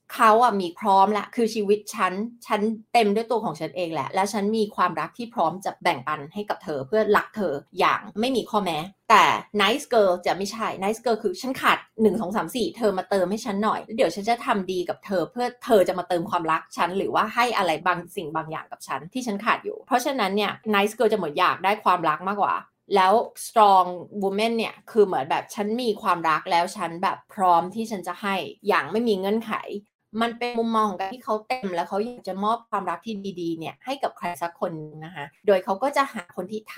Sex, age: female, 20-39